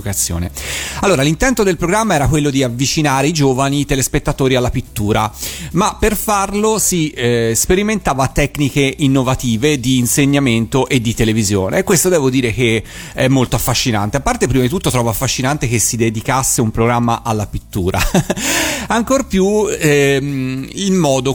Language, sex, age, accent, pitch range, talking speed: Italian, male, 40-59, native, 115-160 Hz, 150 wpm